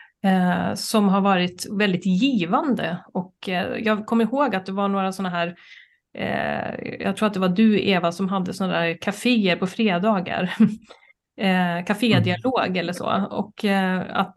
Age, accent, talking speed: 30-49, native, 165 wpm